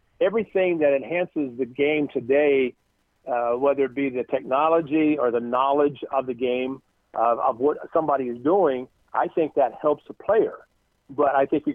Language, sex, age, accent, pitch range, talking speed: English, male, 50-69, American, 130-160 Hz, 175 wpm